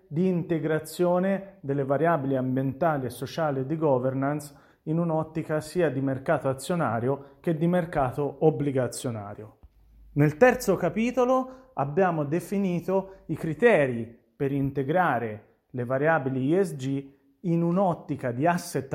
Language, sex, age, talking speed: Italian, male, 30-49, 110 wpm